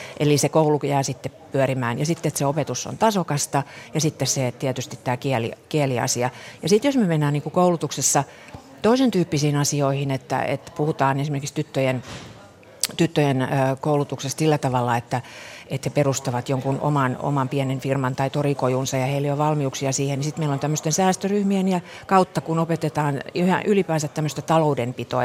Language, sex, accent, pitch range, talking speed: Finnish, female, native, 135-160 Hz, 165 wpm